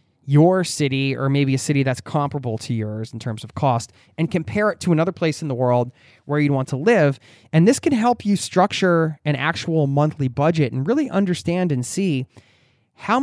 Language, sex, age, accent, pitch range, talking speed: English, male, 20-39, American, 120-170 Hz, 200 wpm